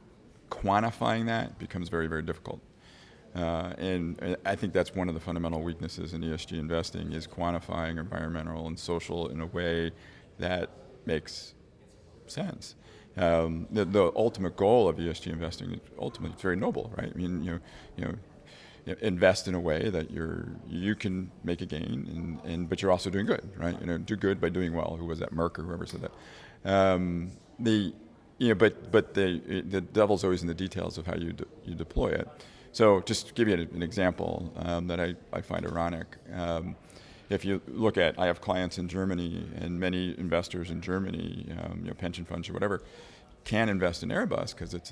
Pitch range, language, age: 85-95 Hz, English, 40-59